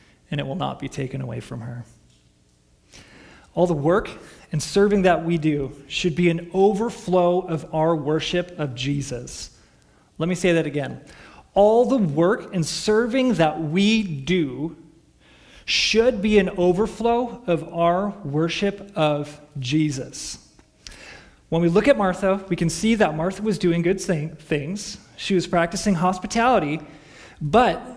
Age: 30-49